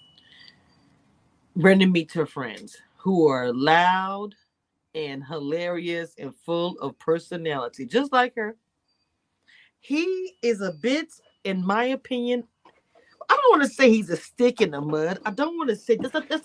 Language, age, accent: English, 40-59, American